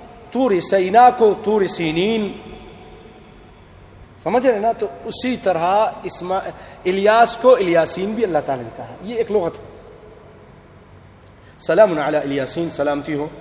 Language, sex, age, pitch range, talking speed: English, male, 40-59, 130-175 Hz, 115 wpm